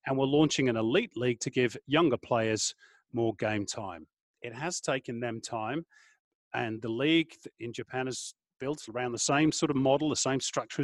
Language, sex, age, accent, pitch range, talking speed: English, male, 40-59, British, 120-145 Hz, 190 wpm